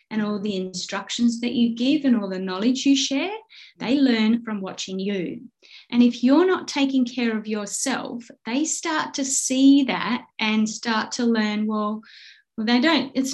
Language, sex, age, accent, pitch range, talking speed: English, female, 30-49, Australian, 215-275 Hz, 180 wpm